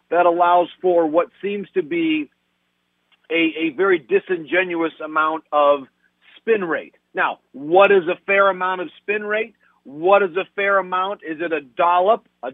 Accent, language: American, English